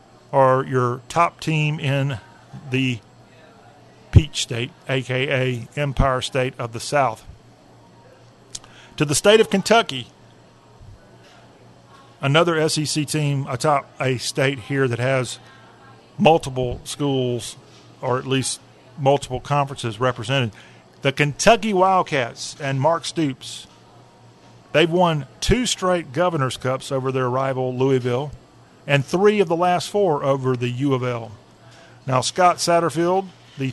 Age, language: 50-69, English